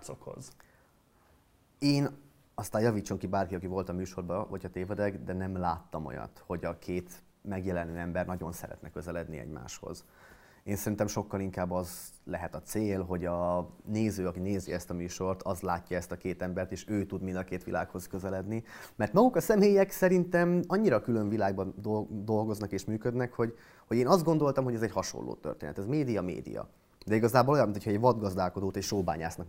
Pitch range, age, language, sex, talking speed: 90-120 Hz, 30-49, Hungarian, male, 175 wpm